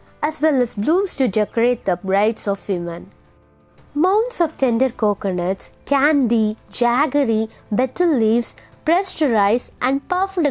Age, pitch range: 20-39, 215-310 Hz